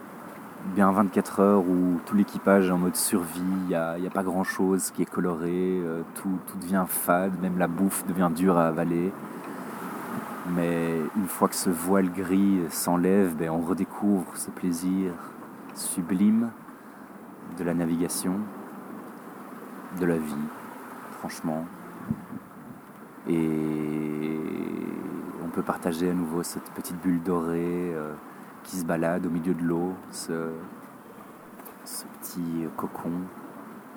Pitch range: 85-95 Hz